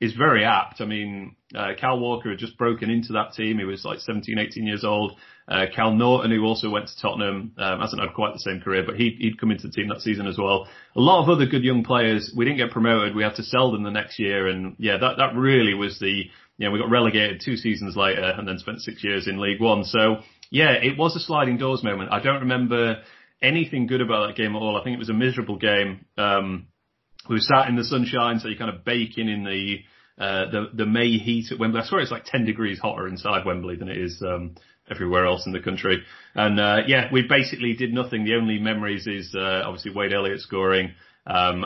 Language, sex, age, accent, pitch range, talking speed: English, male, 30-49, British, 100-120 Hz, 245 wpm